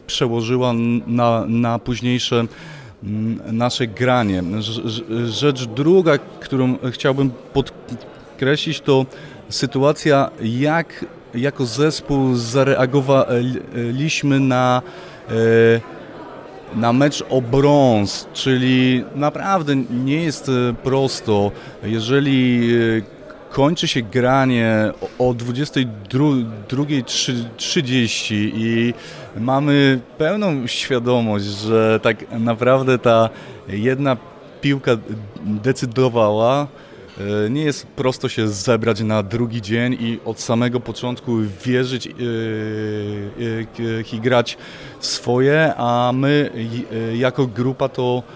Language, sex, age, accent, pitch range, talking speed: Polish, male, 30-49, native, 115-135 Hz, 80 wpm